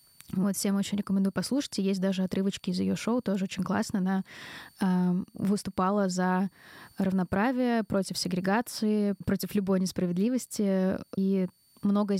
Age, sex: 20-39, female